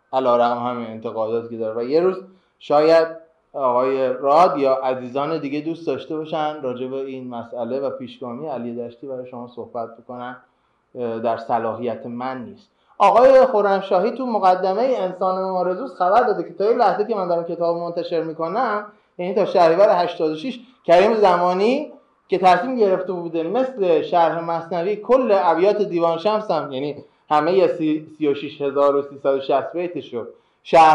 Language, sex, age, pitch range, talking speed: Persian, male, 20-39, 140-190 Hz, 140 wpm